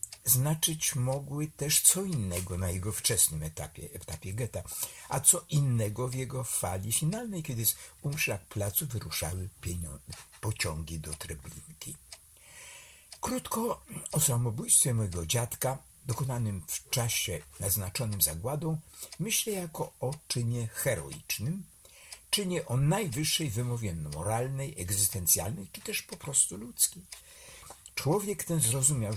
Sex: male